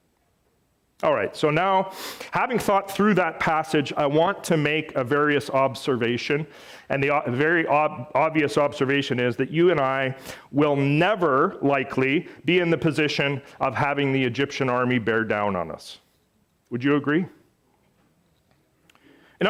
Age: 40-59